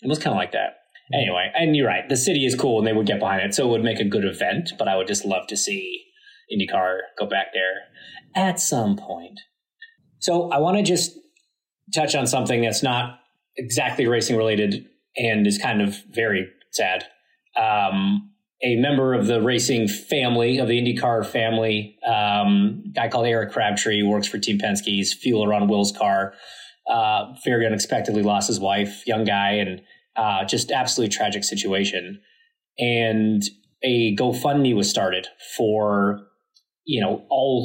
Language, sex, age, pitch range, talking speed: English, male, 30-49, 105-140 Hz, 170 wpm